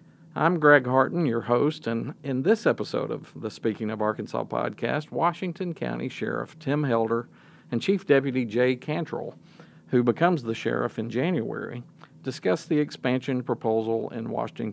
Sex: male